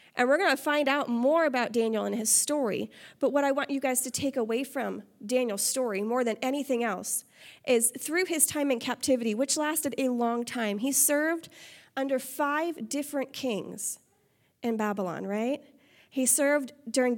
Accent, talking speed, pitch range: American, 180 wpm, 235-285 Hz